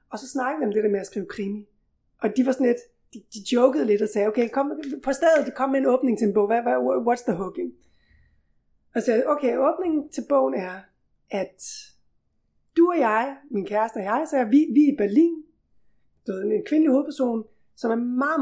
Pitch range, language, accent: 205-275 Hz, Danish, native